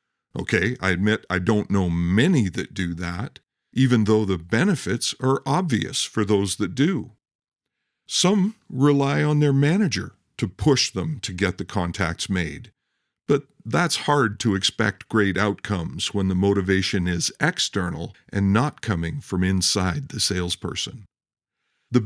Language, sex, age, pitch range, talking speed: English, male, 50-69, 100-145 Hz, 145 wpm